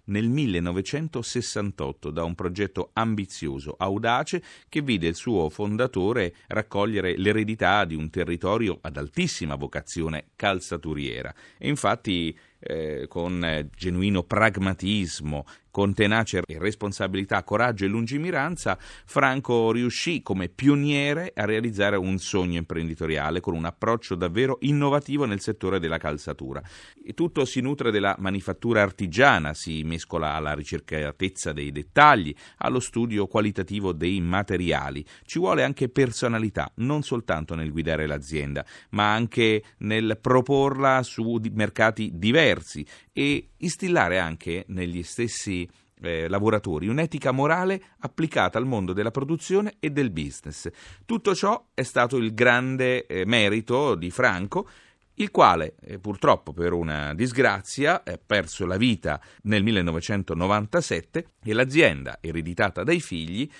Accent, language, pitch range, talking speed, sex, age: native, Italian, 85-120 Hz, 120 wpm, male, 30-49